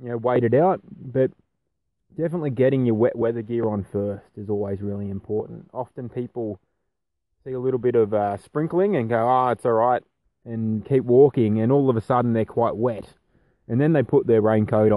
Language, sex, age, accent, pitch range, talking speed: English, male, 20-39, Australian, 110-135 Hz, 200 wpm